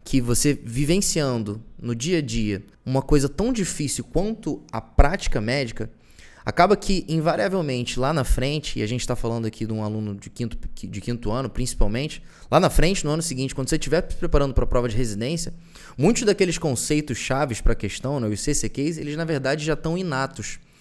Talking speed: 195 wpm